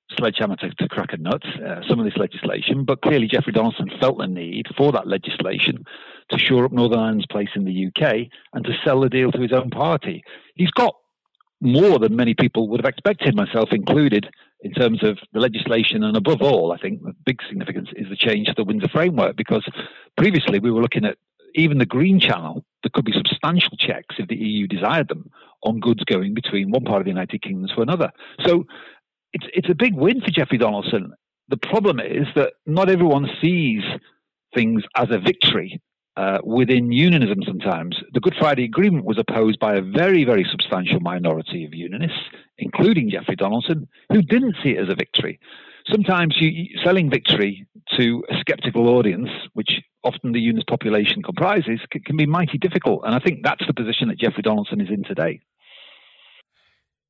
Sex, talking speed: male, 190 wpm